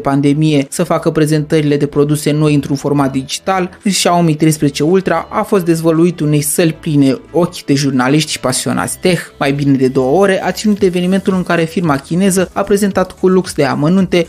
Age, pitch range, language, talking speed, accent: 20-39, 145-185 Hz, Romanian, 180 wpm, native